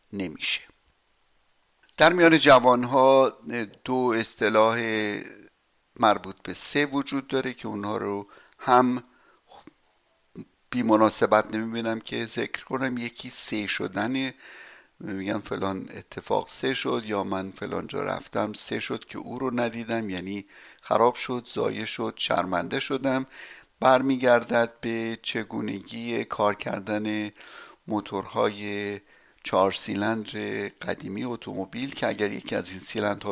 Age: 60-79